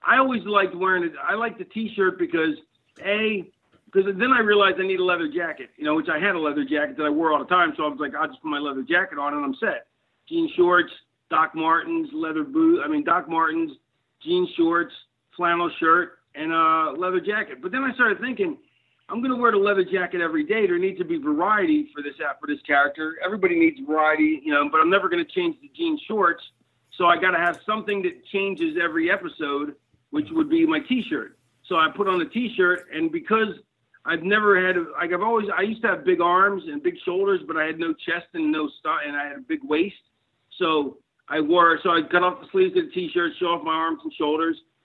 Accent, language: American, English